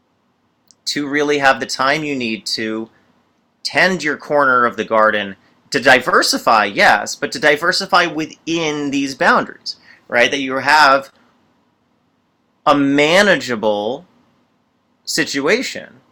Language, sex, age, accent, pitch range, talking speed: English, male, 30-49, American, 110-155 Hz, 110 wpm